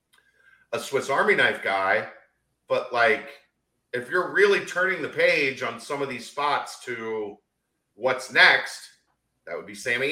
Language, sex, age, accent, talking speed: English, male, 40-59, American, 150 wpm